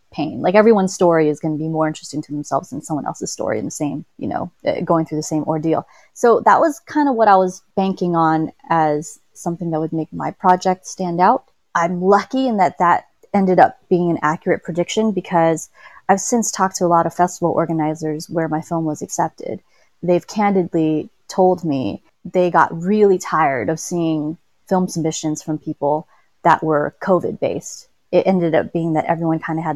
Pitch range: 160-185 Hz